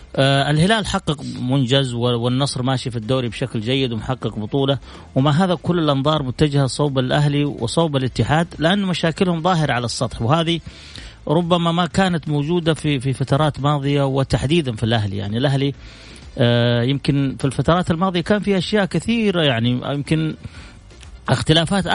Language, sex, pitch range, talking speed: Arabic, male, 125-165 Hz, 135 wpm